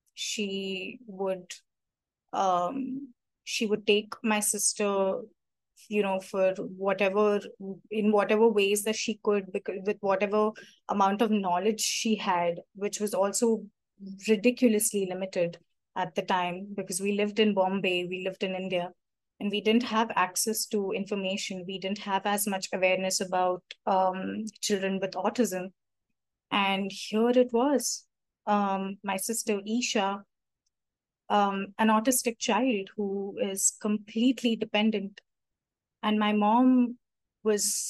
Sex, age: female, 20-39